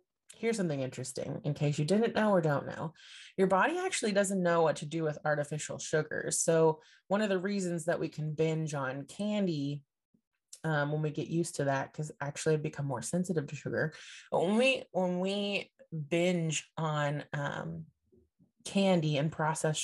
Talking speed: 180 wpm